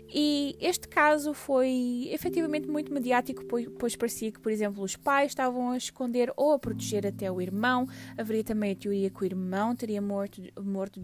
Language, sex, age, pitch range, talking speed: English, female, 20-39, 190-230 Hz, 180 wpm